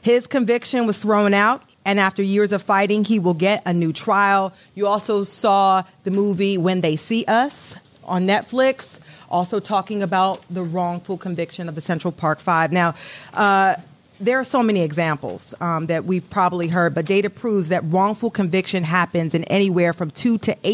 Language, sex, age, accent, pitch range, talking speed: English, female, 40-59, American, 165-205 Hz, 180 wpm